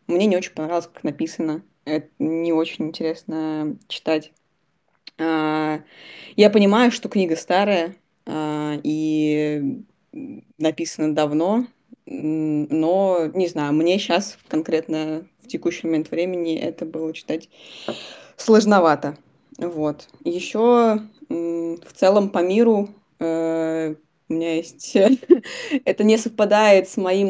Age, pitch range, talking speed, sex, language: 20-39, 160-190 Hz, 105 wpm, female, Russian